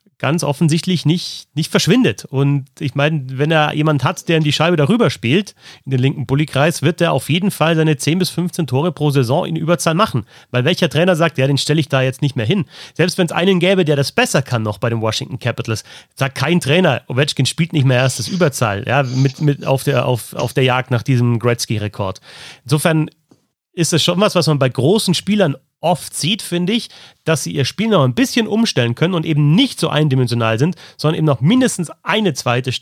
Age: 30-49